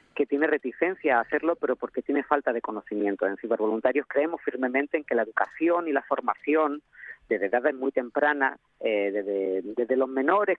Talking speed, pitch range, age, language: 170 wpm, 125-155 Hz, 40-59, Spanish